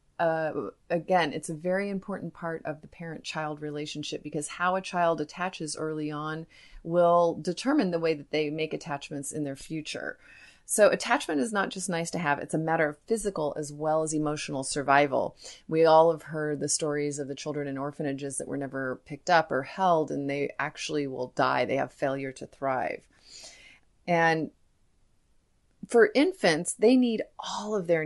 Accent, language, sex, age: American, English, female, 30-49